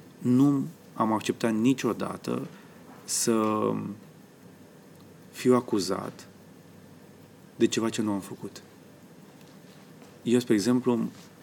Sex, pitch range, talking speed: male, 100-125 Hz, 85 wpm